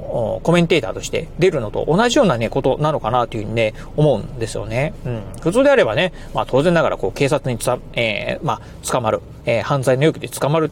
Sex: male